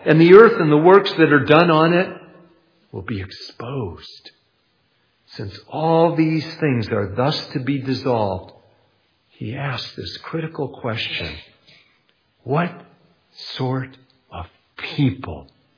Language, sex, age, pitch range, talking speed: English, male, 60-79, 110-155 Hz, 120 wpm